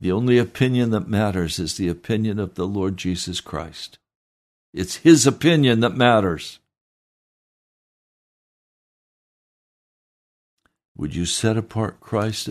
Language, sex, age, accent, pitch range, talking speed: English, male, 60-79, American, 85-105 Hz, 110 wpm